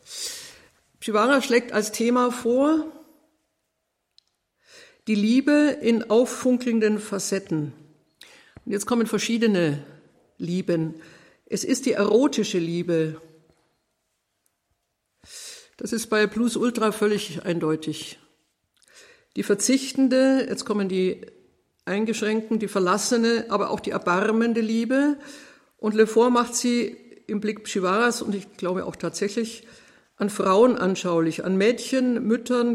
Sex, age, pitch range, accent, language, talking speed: female, 50-69, 195-245 Hz, German, German, 105 wpm